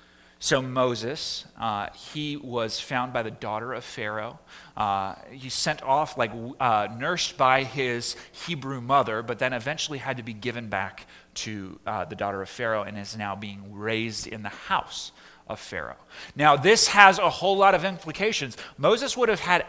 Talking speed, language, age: 175 wpm, English, 30-49